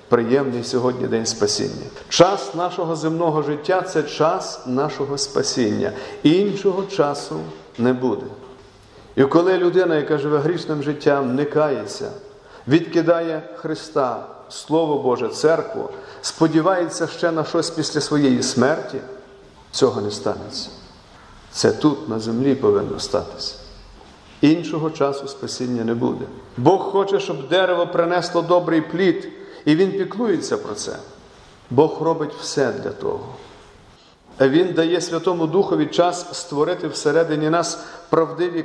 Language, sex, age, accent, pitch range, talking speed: Ukrainian, male, 40-59, native, 135-180 Hz, 120 wpm